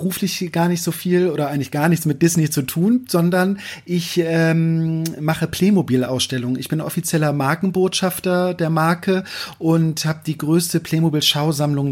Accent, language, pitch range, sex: German, German, 140-170 Hz, male